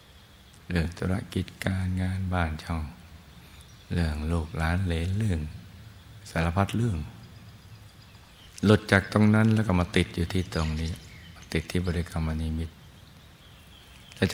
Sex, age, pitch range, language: male, 60-79, 85-100 Hz, Thai